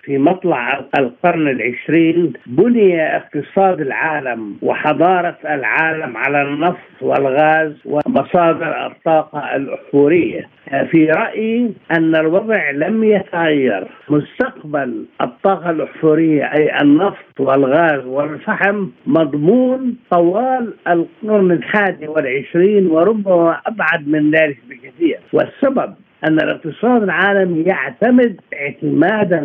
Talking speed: 90 wpm